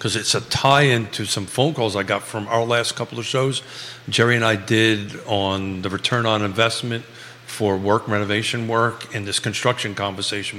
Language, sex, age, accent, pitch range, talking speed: English, male, 50-69, American, 105-130 Hz, 185 wpm